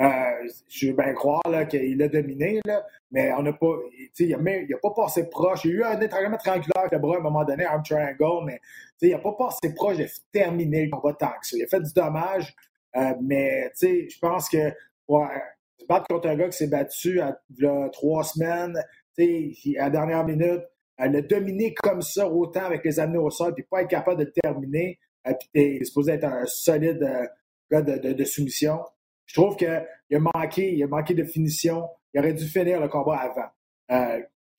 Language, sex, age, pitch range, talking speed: French, male, 30-49, 140-180 Hz, 215 wpm